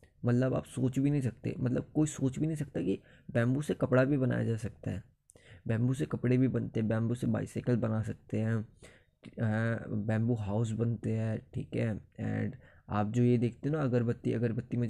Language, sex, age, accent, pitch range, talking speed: Hindi, male, 20-39, native, 110-125 Hz, 195 wpm